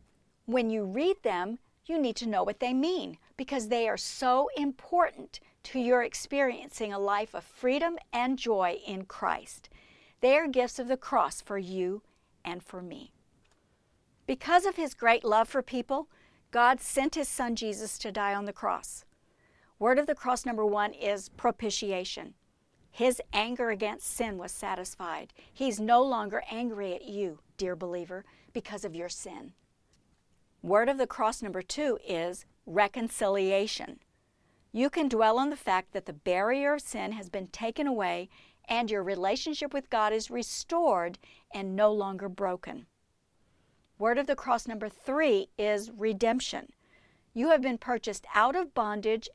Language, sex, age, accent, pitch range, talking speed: English, female, 50-69, American, 205-255 Hz, 160 wpm